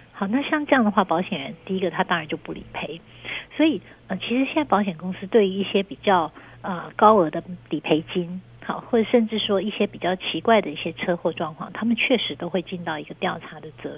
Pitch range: 170-210 Hz